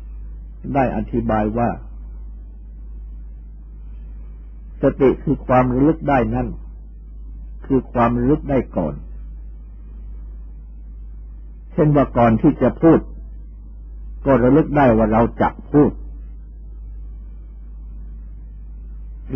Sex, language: male, Thai